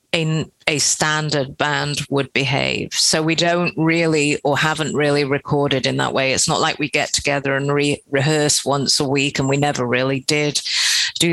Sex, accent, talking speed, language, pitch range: female, British, 180 wpm, English, 140-160 Hz